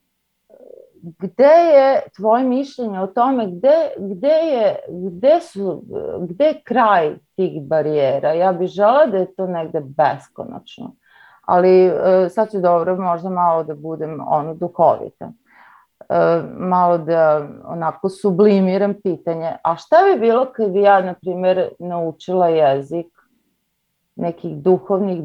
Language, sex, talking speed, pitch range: Croatian, female, 125 wpm, 170-225 Hz